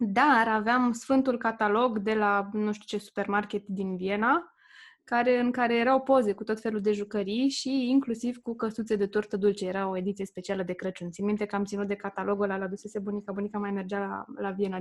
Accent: native